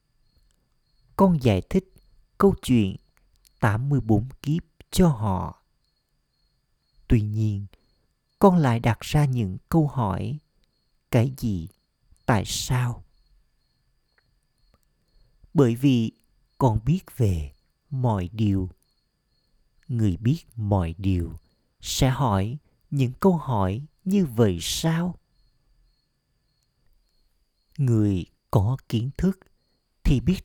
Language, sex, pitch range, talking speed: Vietnamese, male, 95-135 Hz, 95 wpm